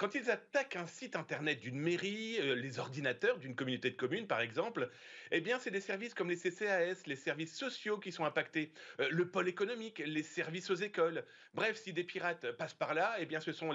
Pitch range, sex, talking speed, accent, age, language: 150-200 Hz, male, 220 wpm, French, 40-59, French